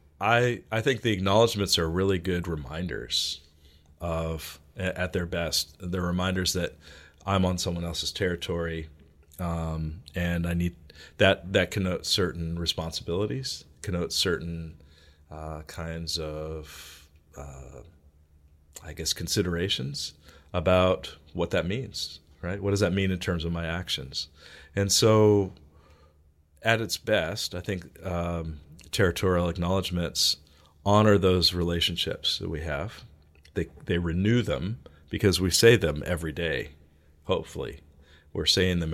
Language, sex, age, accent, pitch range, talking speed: English, male, 40-59, American, 75-95 Hz, 130 wpm